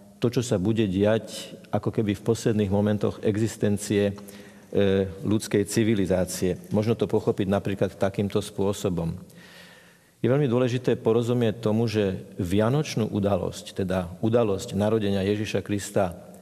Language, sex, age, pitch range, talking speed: Slovak, male, 50-69, 100-115 Hz, 115 wpm